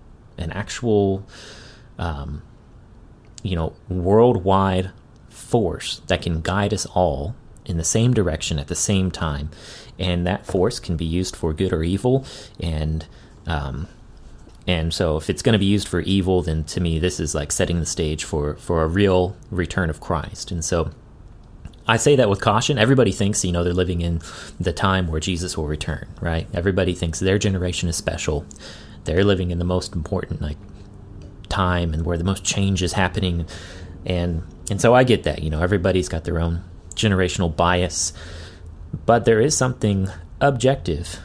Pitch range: 85-100 Hz